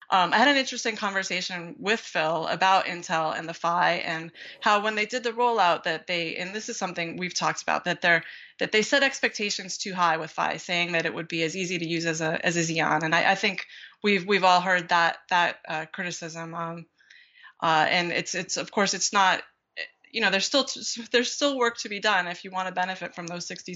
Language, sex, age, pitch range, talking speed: English, female, 20-39, 170-205 Hz, 235 wpm